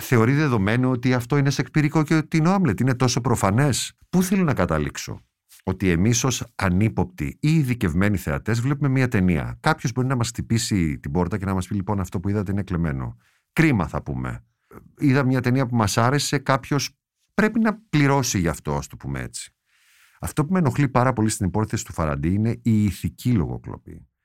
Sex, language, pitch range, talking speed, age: male, Greek, 85-125 Hz, 195 wpm, 50-69